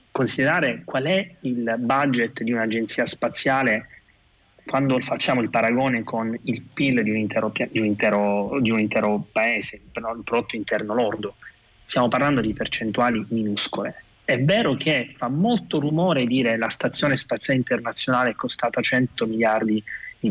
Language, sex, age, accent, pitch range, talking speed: Italian, male, 30-49, native, 110-135 Hz, 150 wpm